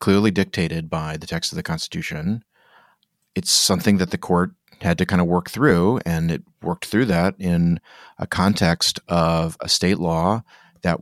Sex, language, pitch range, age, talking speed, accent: male, English, 85-105 Hz, 30-49, 175 wpm, American